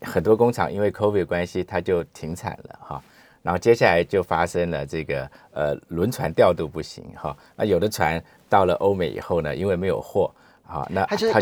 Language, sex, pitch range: Chinese, male, 85-140 Hz